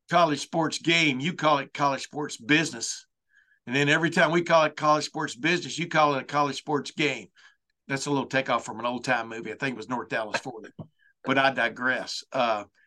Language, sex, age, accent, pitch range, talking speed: English, male, 50-69, American, 135-160 Hz, 215 wpm